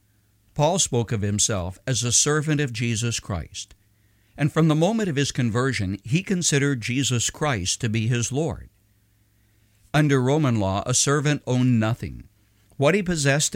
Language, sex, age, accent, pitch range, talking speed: English, male, 60-79, American, 105-140 Hz, 155 wpm